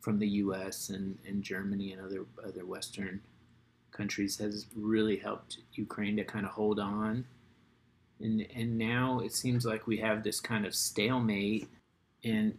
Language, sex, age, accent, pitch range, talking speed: English, male, 30-49, American, 105-120 Hz, 155 wpm